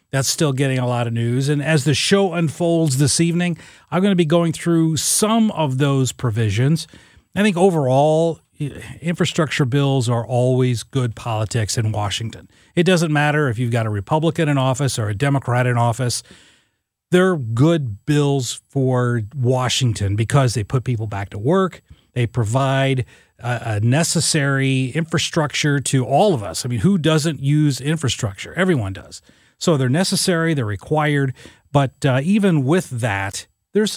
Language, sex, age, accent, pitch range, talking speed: English, male, 40-59, American, 120-160 Hz, 160 wpm